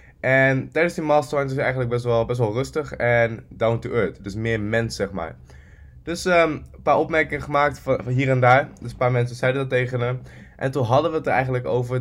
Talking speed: 240 wpm